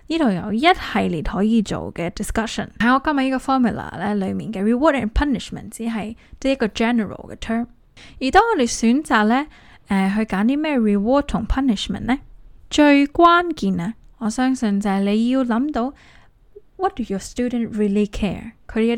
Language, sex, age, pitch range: Chinese, female, 10-29, 205-265 Hz